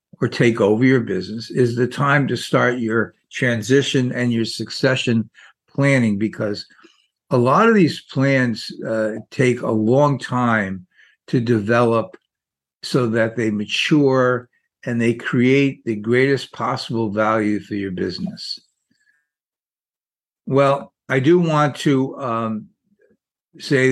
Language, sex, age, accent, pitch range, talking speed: English, male, 60-79, American, 110-135 Hz, 125 wpm